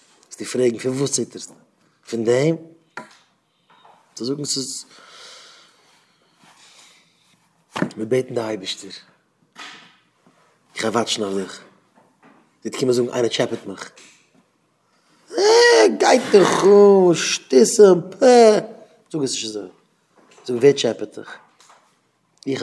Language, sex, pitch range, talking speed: English, male, 110-140 Hz, 50 wpm